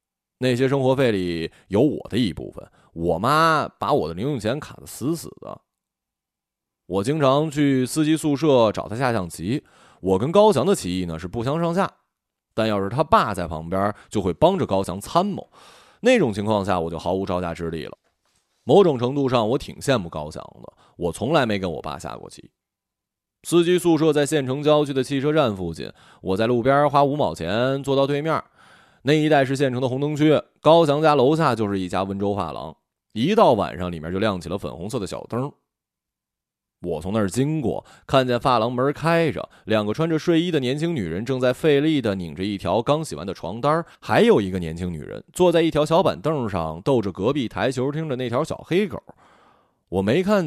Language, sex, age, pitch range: Chinese, male, 20-39, 95-150 Hz